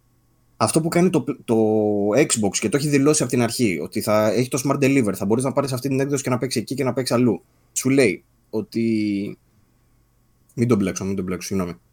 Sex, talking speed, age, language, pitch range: male, 215 wpm, 20-39, Greek, 110-145 Hz